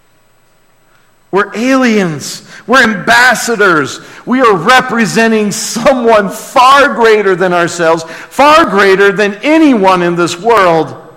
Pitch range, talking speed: 175-250 Hz, 100 wpm